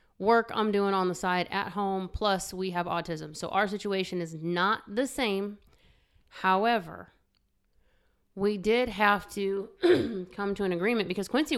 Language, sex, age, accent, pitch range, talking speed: English, female, 30-49, American, 170-205 Hz, 155 wpm